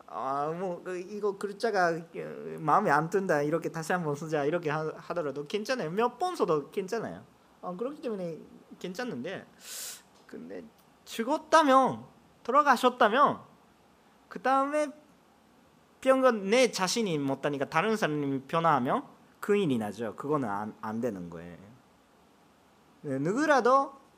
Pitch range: 155-265 Hz